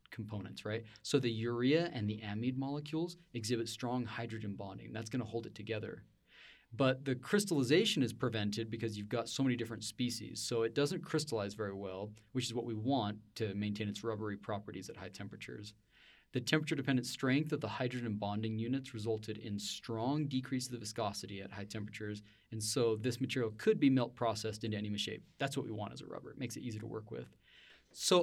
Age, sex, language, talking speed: 20-39, male, English, 200 wpm